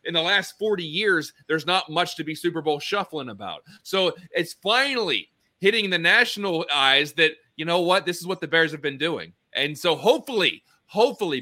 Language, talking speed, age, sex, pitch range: English, 195 wpm, 30-49, male, 140-175 Hz